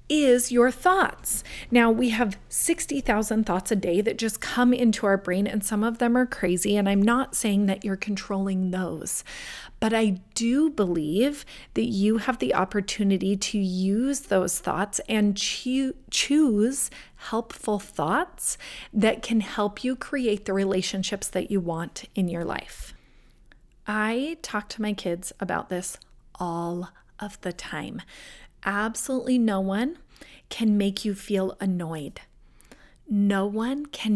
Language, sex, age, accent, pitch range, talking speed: English, female, 30-49, American, 195-250 Hz, 145 wpm